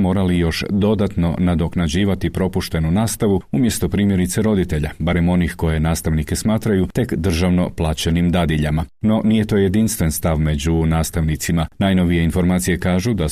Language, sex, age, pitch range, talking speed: Croatian, male, 40-59, 80-95 Hz, 130 wpm